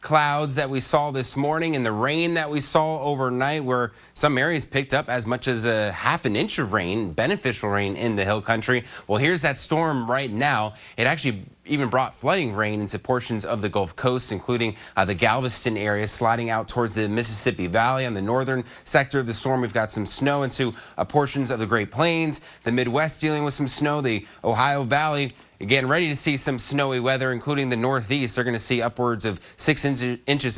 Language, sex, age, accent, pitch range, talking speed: English, male, 20-39, American, 115-140 Hz, 210 wpm